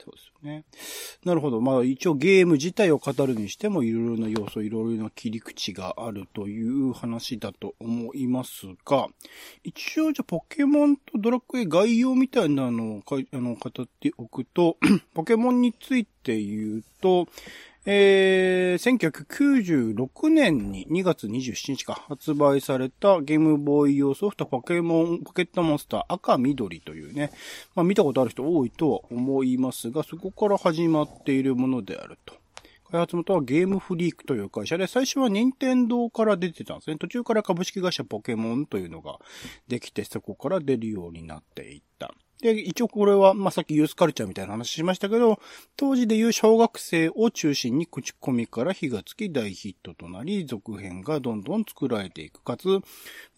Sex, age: male, 40-59